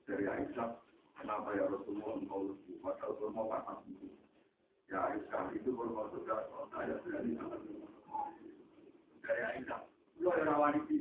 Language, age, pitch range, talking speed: Indonesian, 60-79, 210-350 Hz, 55 wpm